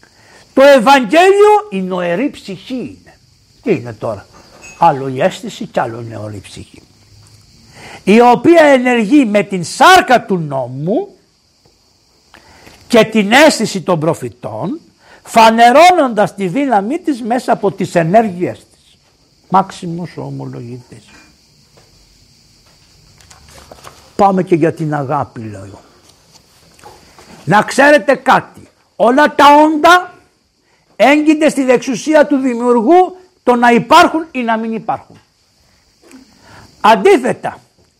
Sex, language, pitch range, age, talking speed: male, Greek, 175-290 Hz, 60-79, 105 wpm